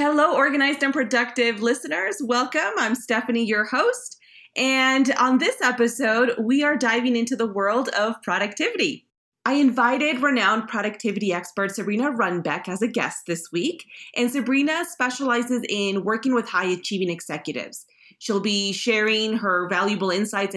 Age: 30-49